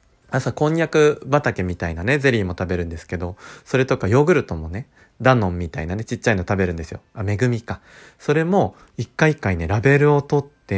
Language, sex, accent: Japanese, male, native